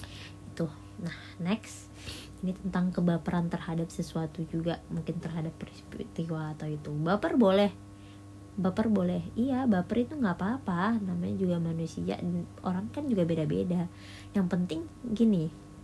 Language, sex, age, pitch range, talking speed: Indonesian, female, 20-39, 145-185 Hz, 120 wpm